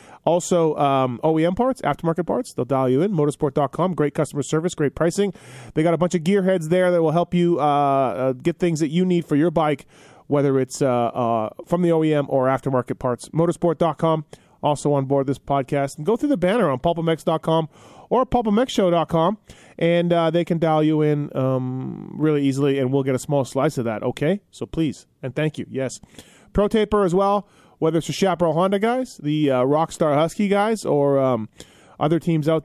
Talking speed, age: 195 wpm, 30-49